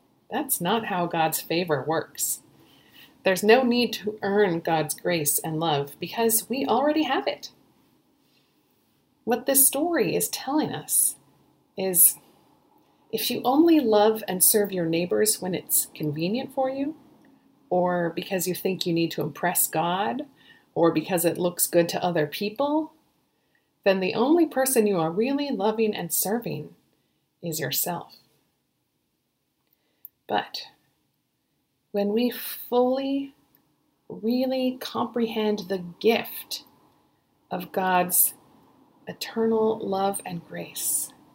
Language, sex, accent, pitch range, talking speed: English, female, American, 180-250 Hz, 120 wpm